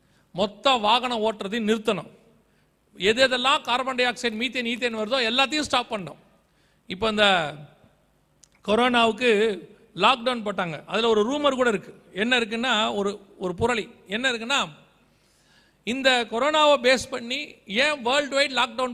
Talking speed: 125 wpm